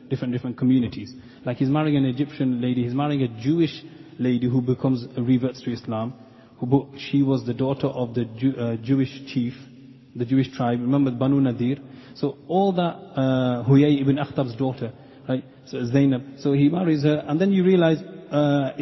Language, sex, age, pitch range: English, male, 30-49, 125-145 Hz